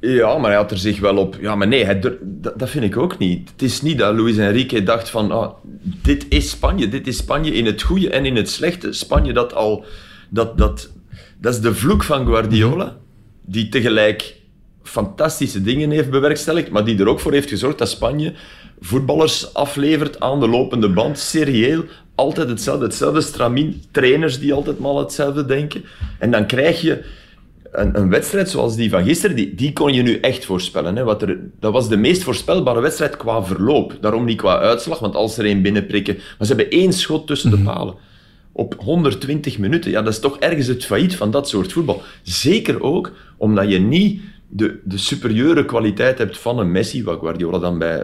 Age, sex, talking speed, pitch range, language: 40-59, male, 200 wpm, 100-140 Hz, Dutch